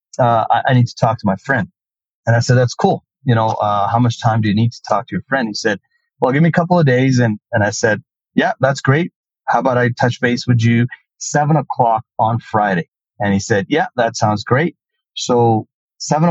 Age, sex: 30-49, male